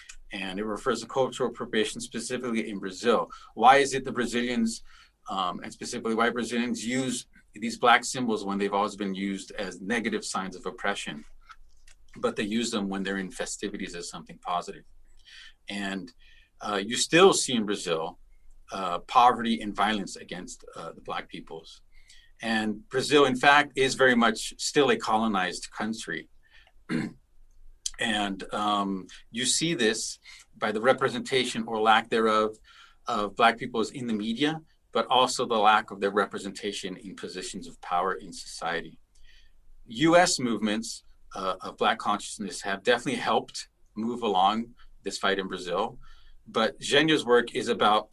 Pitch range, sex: 100-125 Hz, male